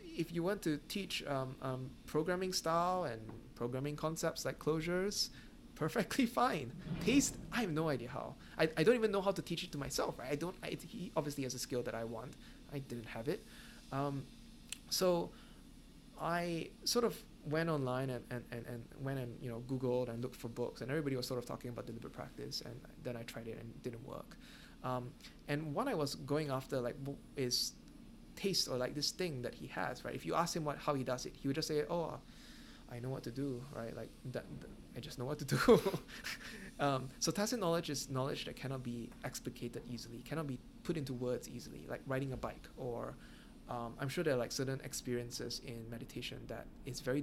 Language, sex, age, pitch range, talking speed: English, male, 20-39, 125-165 Hz, 210 wpm